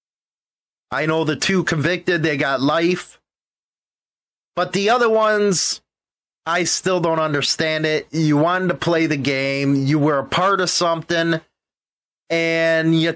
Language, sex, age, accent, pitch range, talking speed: English, male, 30-49, American, 150-185 Hz, 140 wpm